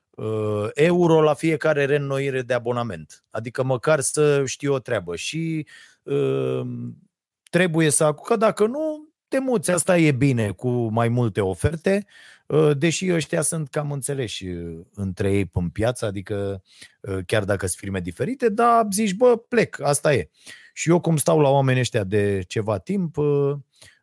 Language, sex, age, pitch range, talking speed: Romanian, male, 30-49, 110-150 Hz, 155 wpm